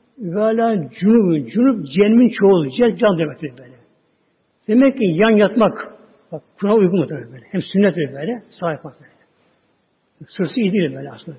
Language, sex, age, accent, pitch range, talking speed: Turkish, male, 60-79, native, 160-230 Hz, 155 wpm